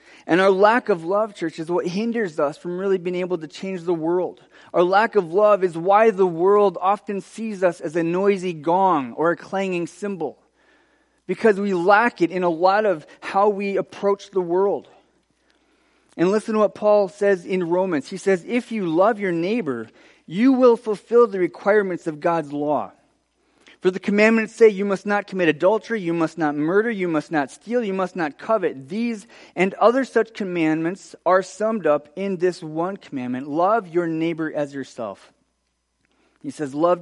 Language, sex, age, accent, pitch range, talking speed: English, male, 30-49, American, 150-205 Hz, 185 wpm